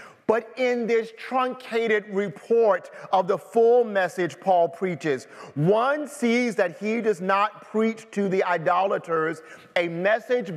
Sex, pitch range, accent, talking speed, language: male, 180-235 Hz, American, 130 wpm, English